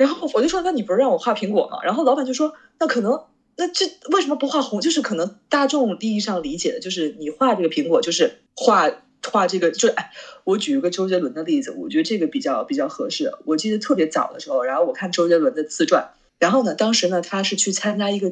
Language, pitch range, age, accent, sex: Chinese, 180-275 Hz, 20-39, native, female